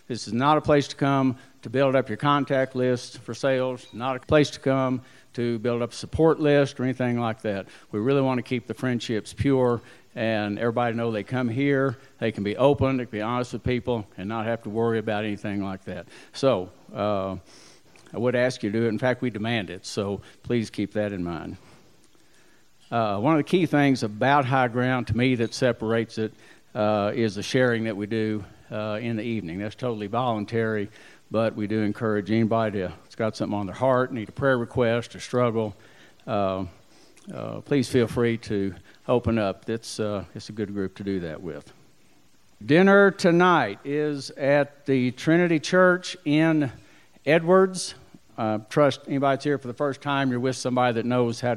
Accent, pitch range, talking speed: American, 110-135 Hz, 200 wpm